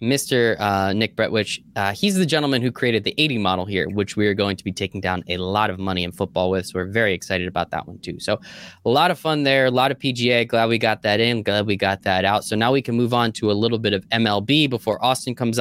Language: English